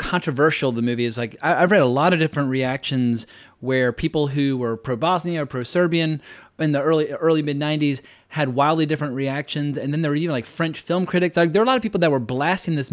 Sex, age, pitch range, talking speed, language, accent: male, 30-49, 130-160 Hz, 230 wpm, English, American